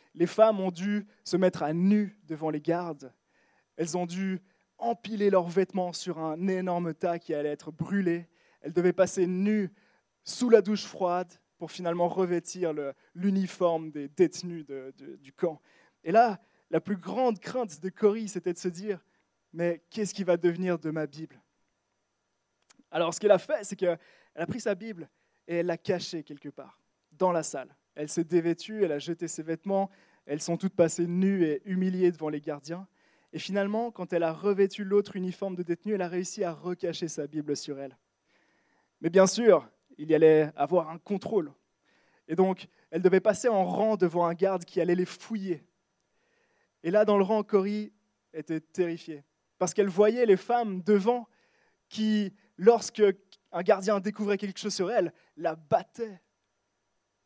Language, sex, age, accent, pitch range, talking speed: French, male, 20-39, French, 165-205 Hz, 180 wpm